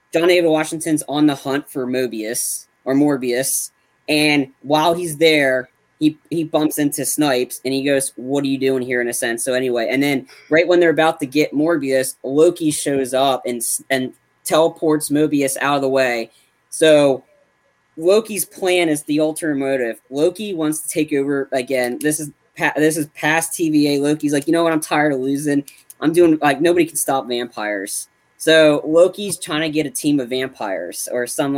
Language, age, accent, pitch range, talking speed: English, 20-39, American, 130-155 Hz, 185 wpm